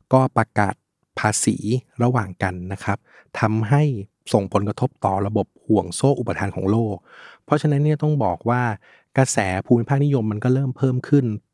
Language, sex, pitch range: Thai, male, 100-130 Hz